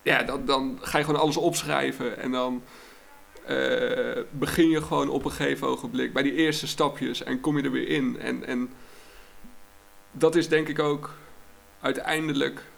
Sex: male